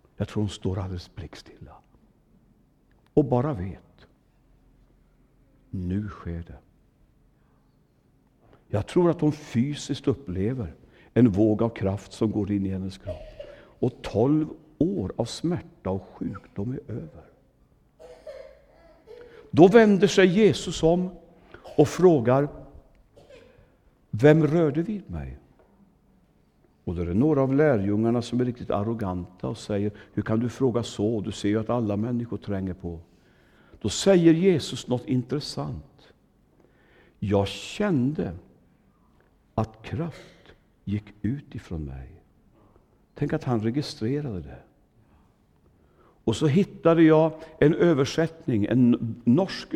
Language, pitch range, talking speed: Swedish, 95-150 Hz, 120 wpm